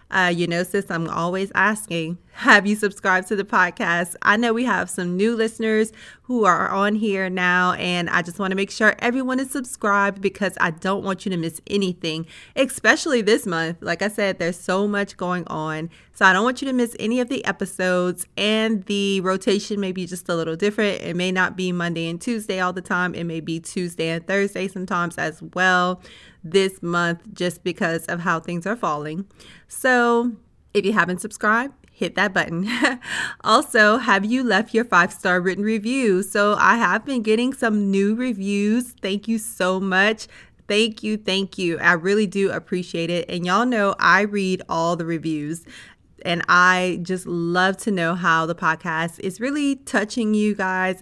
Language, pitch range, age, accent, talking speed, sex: English, 175-215 Hz, 30-49, American, 190 wpm, female